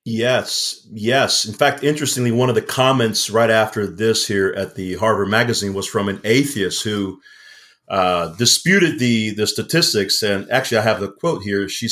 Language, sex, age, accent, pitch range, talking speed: English, male, 40-59, American, 100-120 Hz, 175 wpm